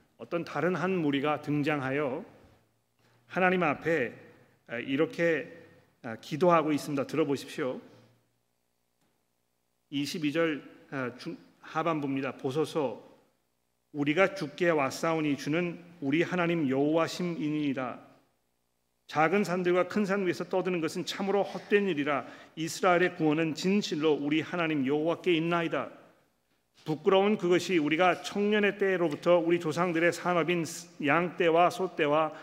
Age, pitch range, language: 40-59, 145-180 Hz, Korean